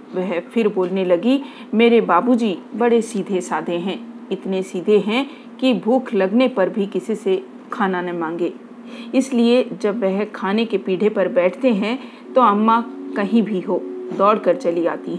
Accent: native